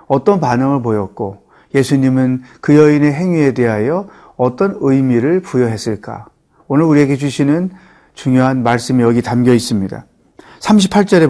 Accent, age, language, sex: native, 40-59, Korean, male